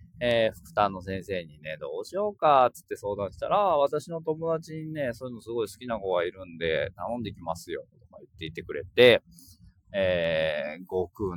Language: Japanese